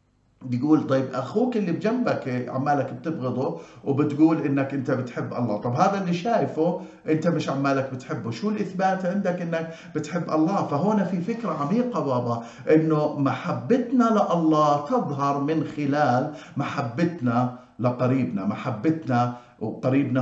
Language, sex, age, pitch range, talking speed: Arabic, male, 50-69, 125-165 Hz, 125 wpm